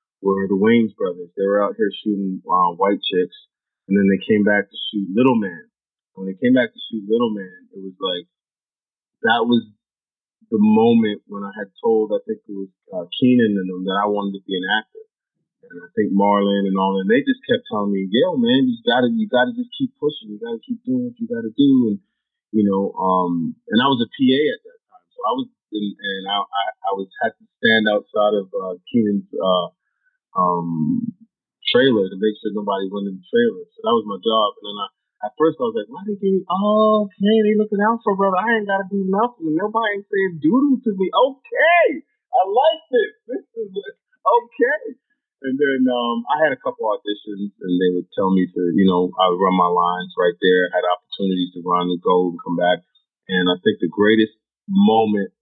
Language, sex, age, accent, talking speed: English, male, 30-49, American, 220 wpm